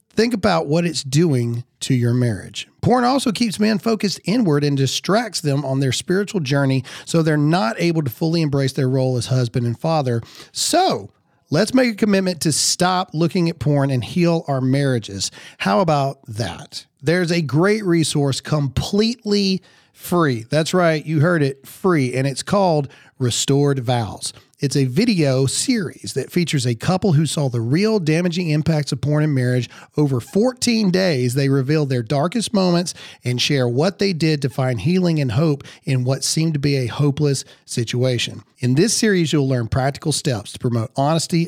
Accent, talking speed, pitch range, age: American, 175 wpm, 125-165 Hz, 40-59